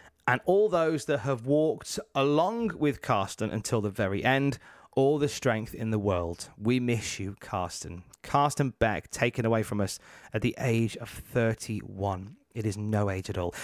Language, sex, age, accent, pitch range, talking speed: English, male, 30-49, British, 115-155 Hz, 175 wpm